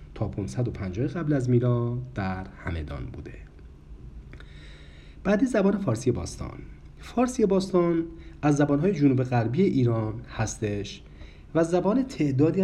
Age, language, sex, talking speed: 40-59, Persian, male, 105 wpm